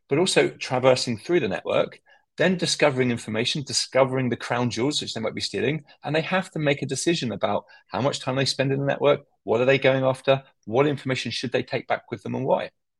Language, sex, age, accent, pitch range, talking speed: English, male, 30-49, British, 115-145 Hz, 225 wpm